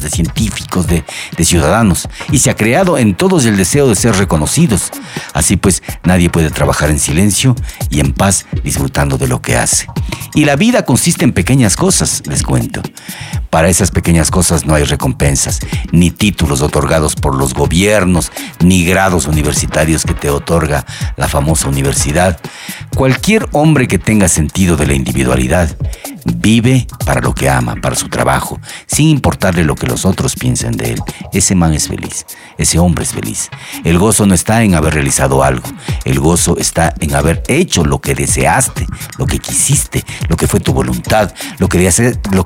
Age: 50-69